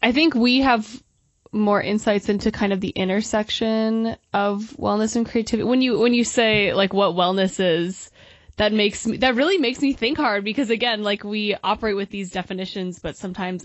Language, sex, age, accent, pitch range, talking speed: English, female, 20-39, American, 185-220 Hz, 190 wpm